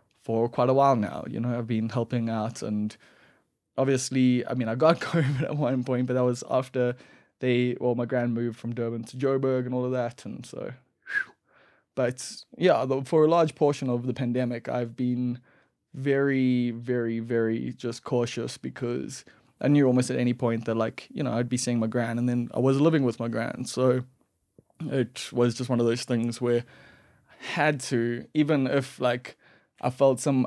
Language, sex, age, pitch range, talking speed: English, male, 20-39, 120-135 Hz, 195 wpm